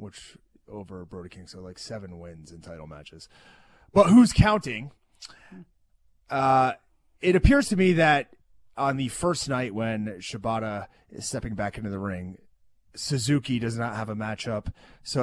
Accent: American